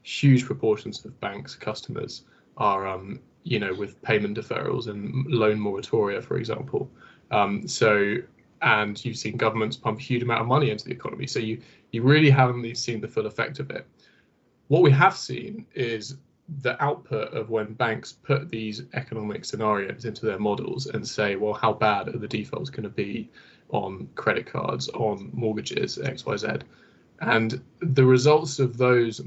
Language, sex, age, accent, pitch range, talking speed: English, male, 20-39, British, 105-130 Hz, 170 wpm